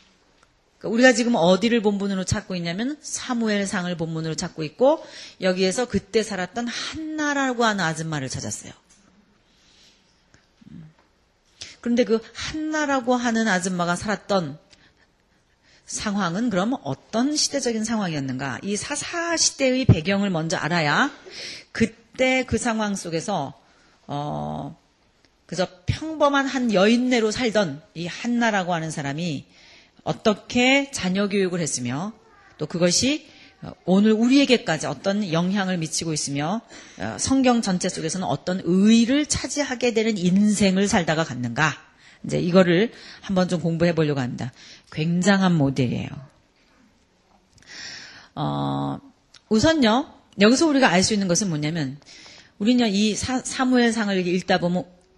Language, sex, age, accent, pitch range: Korean, female, 40-59, native, 170-240 Hz